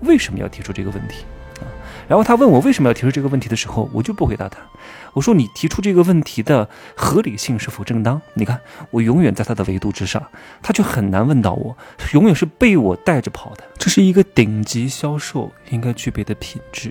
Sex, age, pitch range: male, 20-39, 105-145 Hz